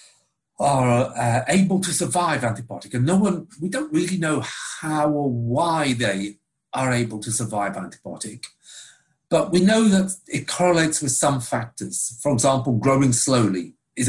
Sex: male